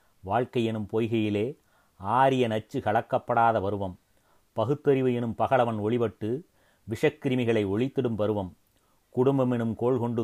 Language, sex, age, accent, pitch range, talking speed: Tamil, male, 30-49, native, 110-130 Hz, 105 wpm